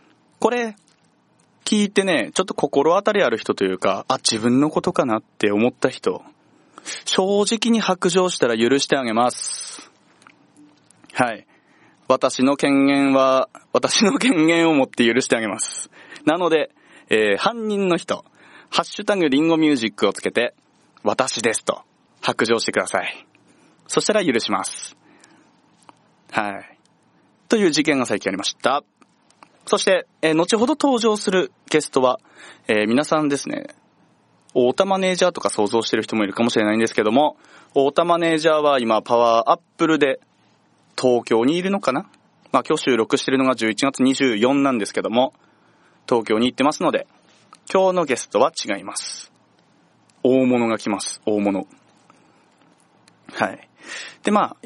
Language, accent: Japanese, native